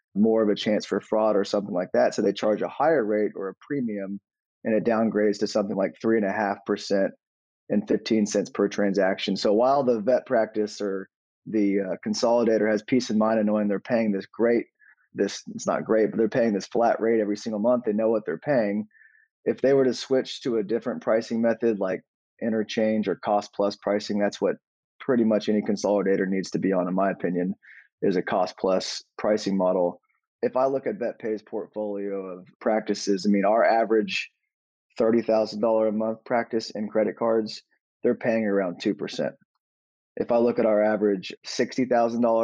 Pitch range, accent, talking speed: 100-115 Hz, American, 190 wpm